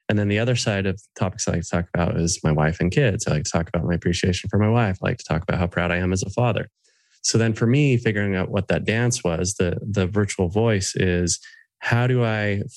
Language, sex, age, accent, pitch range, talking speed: English, male, 20-39, American, 95-115 Hz, 275 wpm